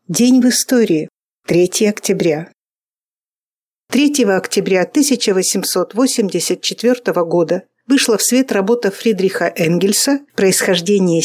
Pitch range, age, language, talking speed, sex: 185-245 Hz, 50-69, Russian, 85 wpm, female